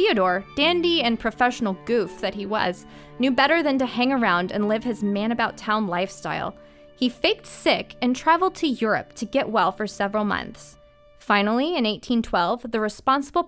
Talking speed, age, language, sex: 165 wpm, 20-39, English, female